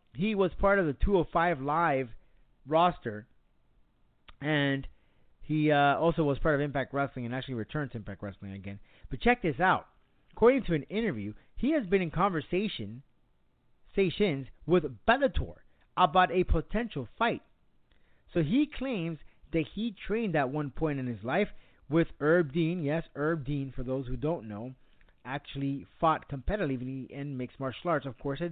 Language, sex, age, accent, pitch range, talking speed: English, male, 30-49, American, 125-175 Hz, 160 wpm